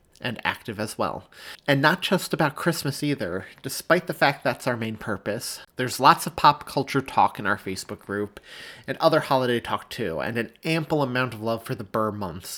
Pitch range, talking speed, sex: 110-140 Hz, 200 wpm, male